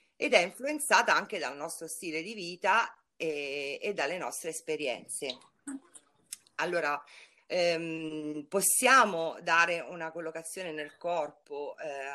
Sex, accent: female, native